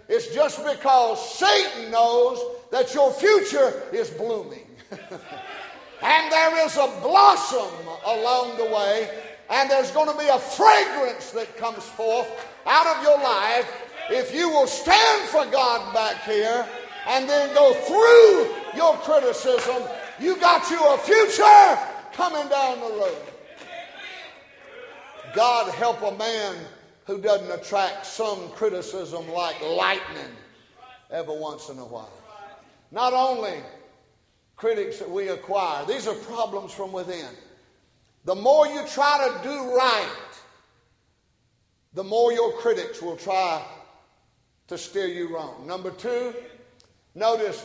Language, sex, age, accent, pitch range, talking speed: English, male, 50-69, American, 200-315 Hz, 125 wpm